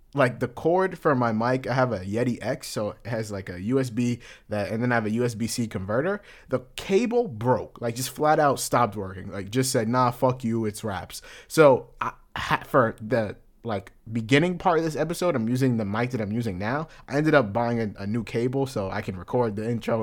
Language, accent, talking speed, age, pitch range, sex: English, American, 220 wpm, 20-39, 110-135 Hz, male